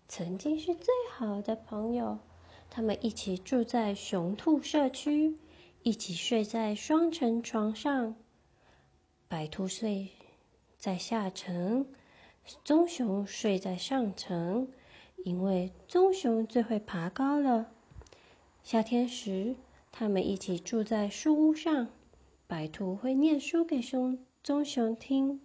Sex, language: female, Chinese